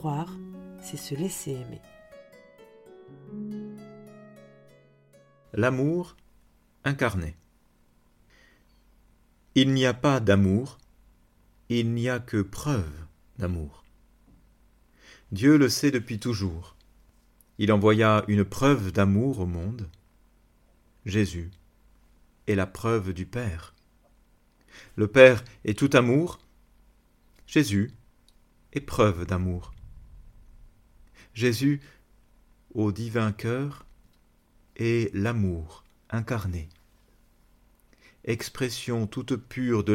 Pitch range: 95-125 Hz